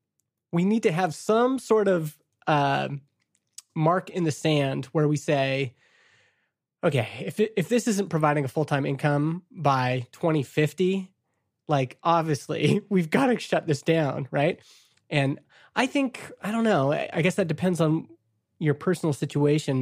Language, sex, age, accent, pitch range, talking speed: English, male, 30-49, American, 140-180 Hz, 150 wpm